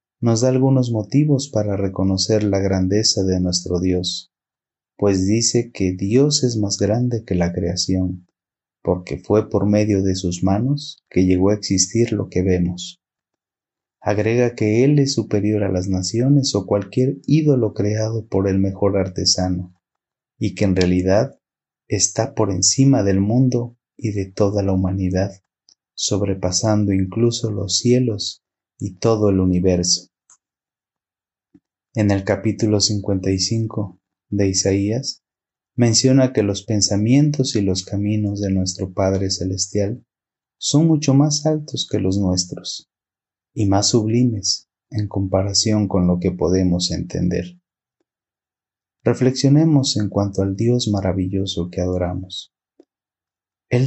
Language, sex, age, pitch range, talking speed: Spanish, male, 30-49, 95-115 Hz, 130 wpm